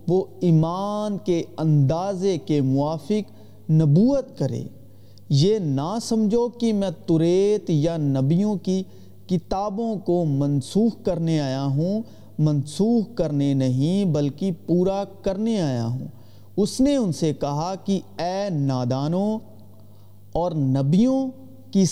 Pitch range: 145-210 Hz